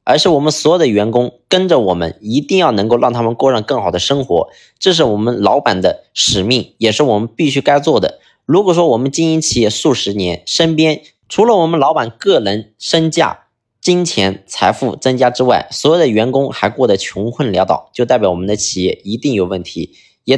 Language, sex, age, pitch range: Chinese, male, 20-39, 105-150 Hz